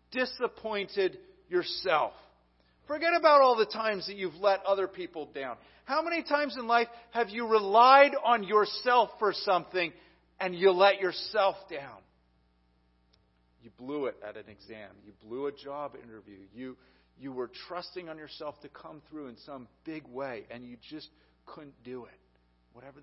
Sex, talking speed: male, 160 wpm